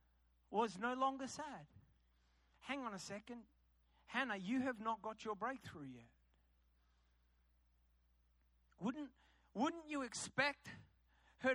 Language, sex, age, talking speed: English, male, 30-49, 110 wpm